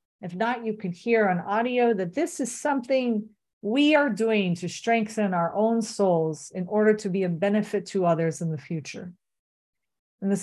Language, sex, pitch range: English, female, 165-215 Hz